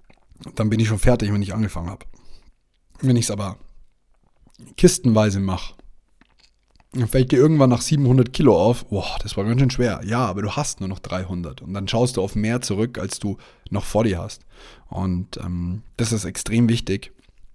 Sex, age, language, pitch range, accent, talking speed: male, 30-49, German, 95-115 Hz, German, 190 wpm